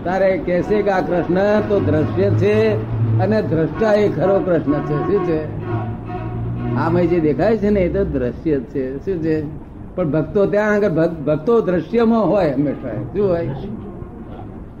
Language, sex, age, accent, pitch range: Gujarati, male, 60-79, native, 140-200 Hz